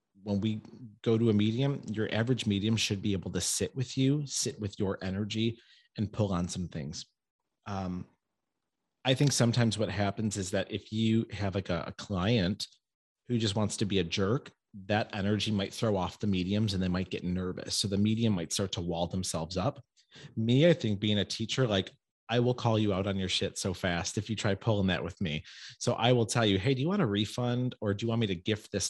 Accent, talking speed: American, 230 wpm